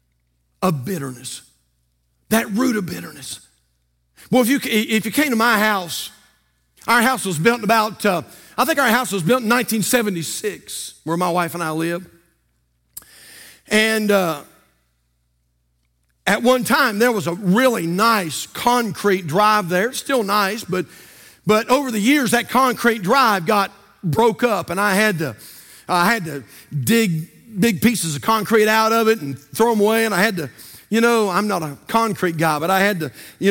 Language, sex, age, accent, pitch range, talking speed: English, male, 50-69, American, 170-240 Hz, 175 wpm